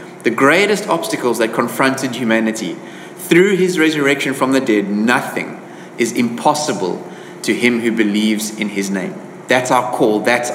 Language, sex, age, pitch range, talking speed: English, male, 30-49, 115-140 Hz, 150 wpm